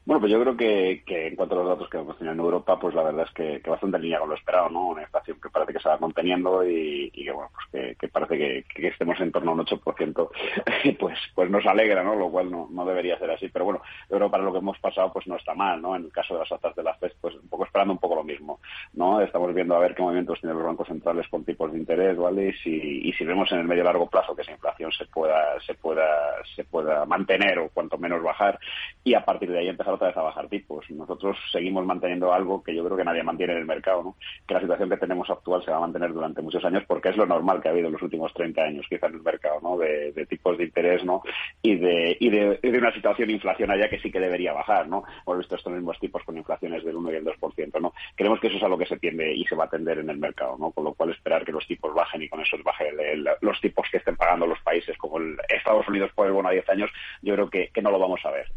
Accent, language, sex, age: Spanish, Spanish, male, 30-49